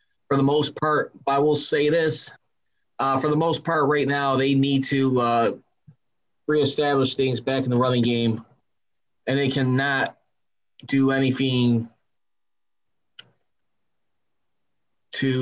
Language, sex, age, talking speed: English, male, 20-39, 125 wpm